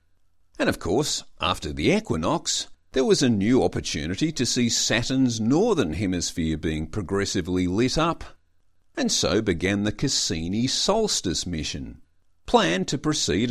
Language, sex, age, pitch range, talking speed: English, male, 50-69, 90-140 Hz, 135 wpm